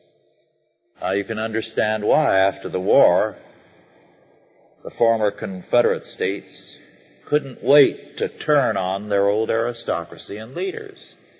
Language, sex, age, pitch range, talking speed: English, male, 50-69, 105-165 Hz, 115 wpm